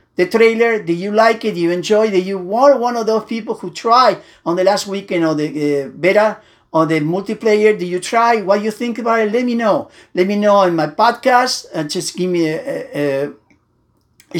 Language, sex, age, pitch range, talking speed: English, male, 50-69, 195-250 Hz, 220 wpm